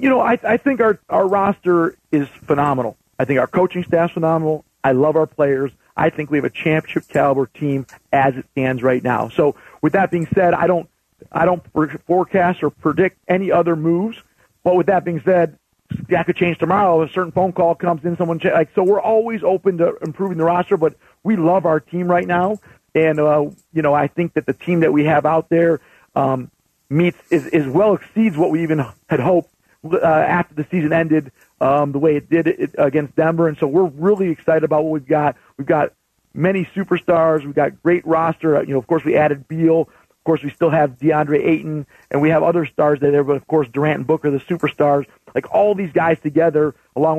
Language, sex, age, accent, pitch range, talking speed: English, male, 40-59, American, 150-175 Hz, 220 wpm